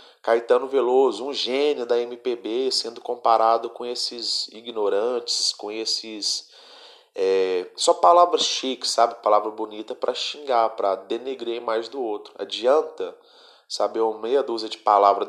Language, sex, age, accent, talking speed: Portuguese, male, 30-49, Brazilian, 135 wpm